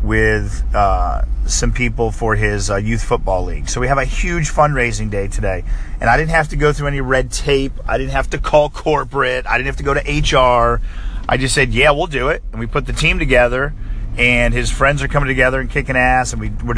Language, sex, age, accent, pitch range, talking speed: English, male, 30-49, American, 110-140 Hz, 235 wpm